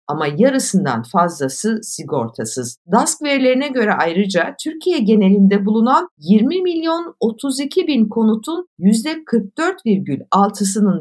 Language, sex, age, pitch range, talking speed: Turkish, female, 60-79, 180-275 Hz, 95 wpm